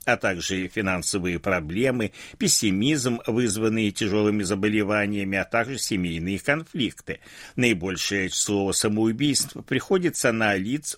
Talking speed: 100 wpm